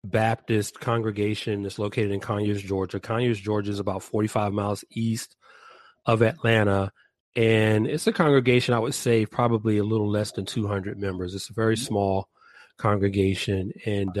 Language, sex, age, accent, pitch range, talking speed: English, male, 30-49, American, 105-120 Hz, 150 wpm